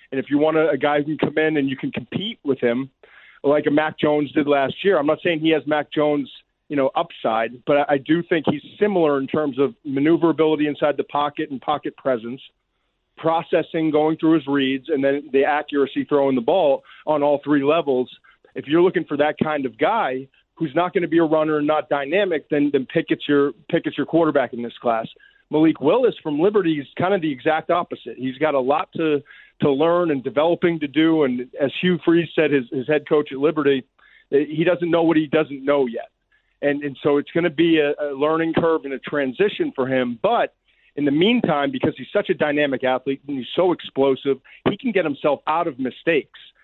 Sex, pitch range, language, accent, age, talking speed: male, 140-165 Hz, English, American, 40-59, 215 wpm